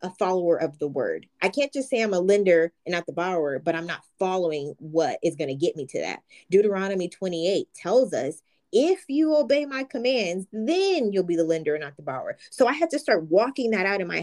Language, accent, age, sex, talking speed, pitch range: English, American, 20-39, female, 230 wpm, 165-235 Hz